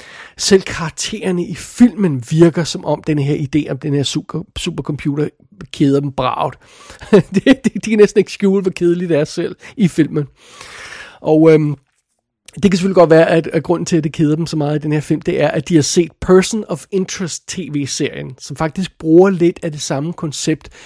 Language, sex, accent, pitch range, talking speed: Danish, male, native, 145-175 Hz, 200 wpm